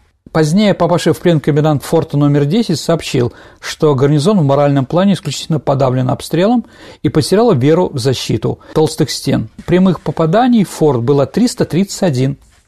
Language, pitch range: Russian, 140-185 Hz